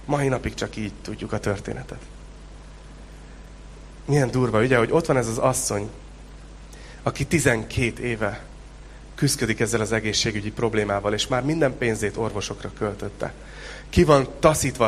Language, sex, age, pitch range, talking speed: Hungarian, male, 30-49, 110-145 Hz, 135 wpm